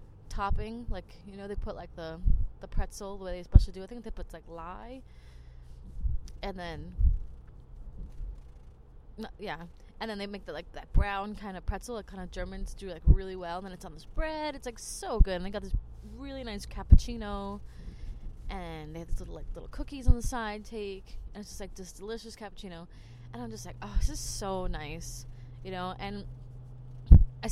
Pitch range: 125-195 Hz